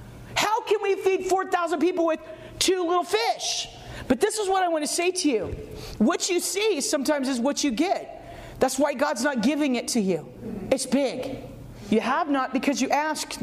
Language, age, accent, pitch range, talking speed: English, 40-59, American, 260-330 Hz, 195 wpm